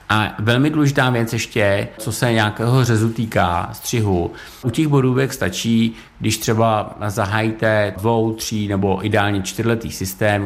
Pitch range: 100-120 Hz